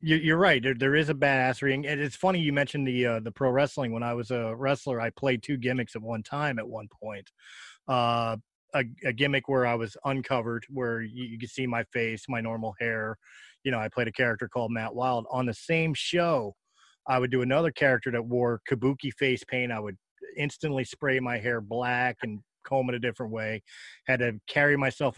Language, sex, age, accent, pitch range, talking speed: English, male, 20-39, American, 120-145 Hz, 210 wpm